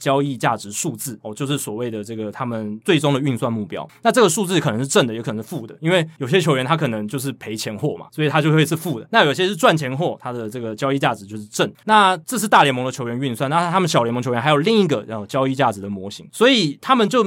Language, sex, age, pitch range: Chinese, male, 20-39, 120-160 Hz